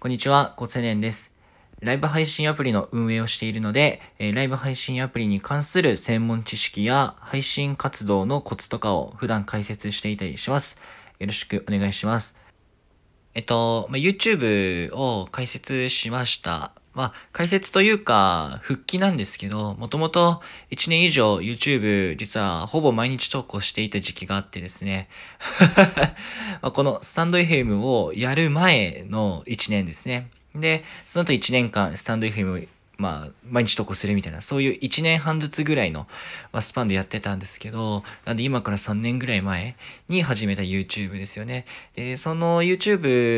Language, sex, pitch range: Japanese, male, 100-135 Hz